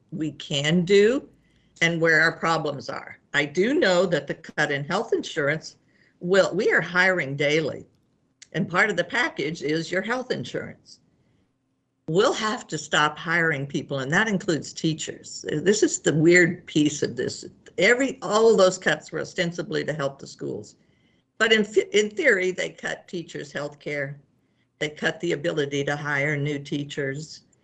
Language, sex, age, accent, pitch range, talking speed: English, female, 60-79, American, 145-185 Hz, 165 wpm